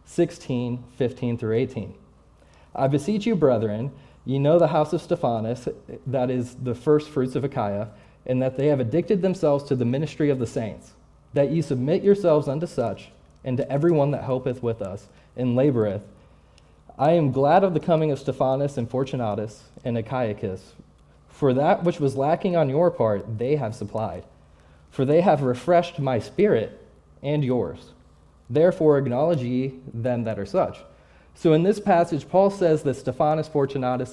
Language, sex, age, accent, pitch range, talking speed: English, male, 20-39, American, 115-155 Hz, 170 wpm